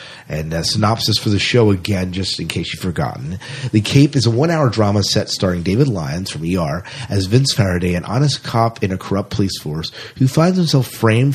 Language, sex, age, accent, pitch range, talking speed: English, male, 30-49, American, 95-125 Hz, 205 wpm